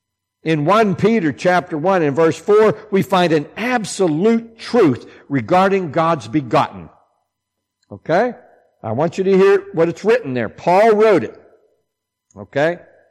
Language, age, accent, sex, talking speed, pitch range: English, 60-79, American, male, 135 wpm, 120-195 Hz